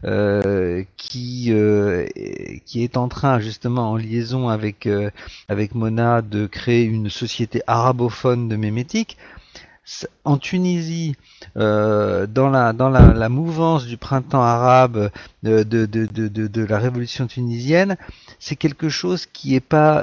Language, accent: French, French